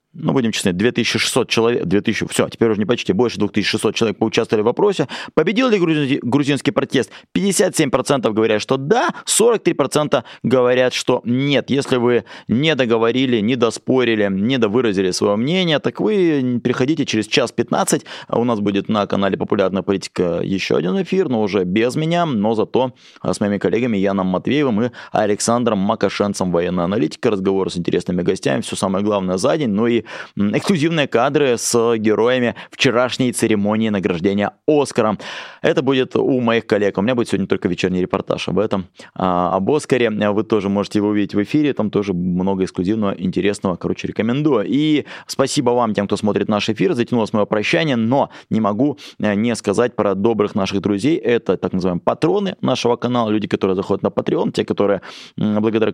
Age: 20-39